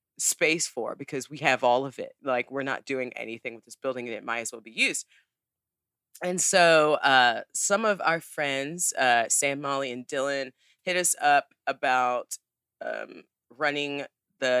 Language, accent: English, American